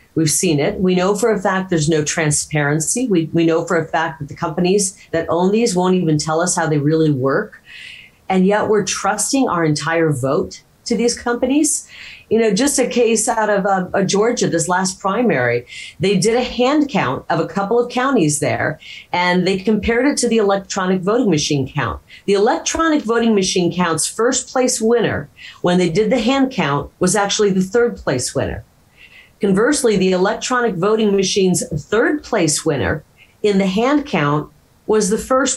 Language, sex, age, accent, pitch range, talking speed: English, female, 40-59, American, 155-210 Hz, 185 wpm